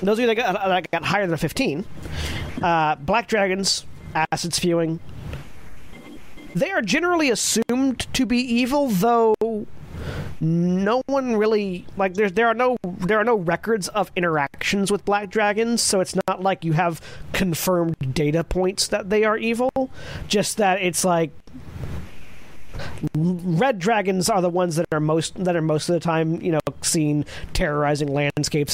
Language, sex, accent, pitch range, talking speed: English, male, American, 165-205 Hz, 165 wpm